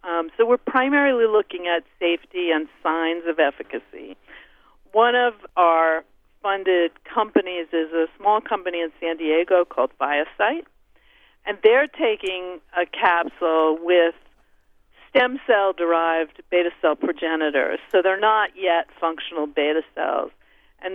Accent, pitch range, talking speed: American, 160-195 Hz, 125 wpm